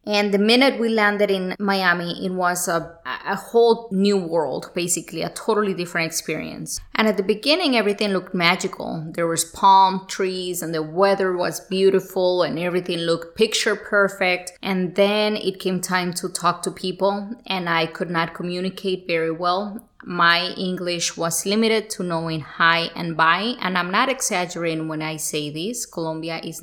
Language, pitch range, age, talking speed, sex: English, 170-200 Hz, 20-39, 170 wpm, female